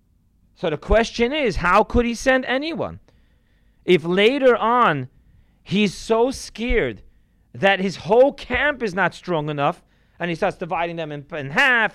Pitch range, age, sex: 165-225 Hz, 40-59, male